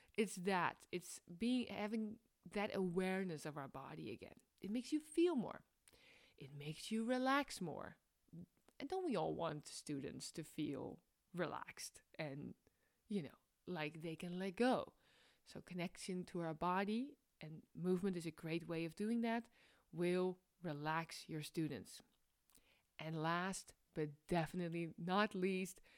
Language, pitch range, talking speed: English, 160-230 Hz, 145 wpm